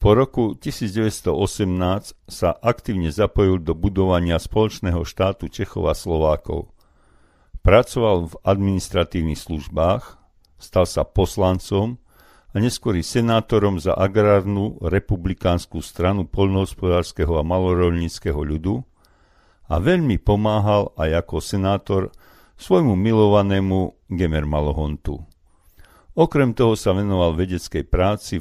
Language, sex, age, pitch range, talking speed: Slovak, male, 50-69, 85-105 Hz, 100 wpm